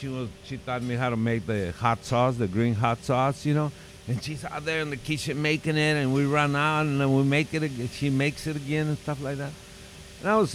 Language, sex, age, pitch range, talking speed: English, male, 50-69, 100-145 Hz, 275 wpm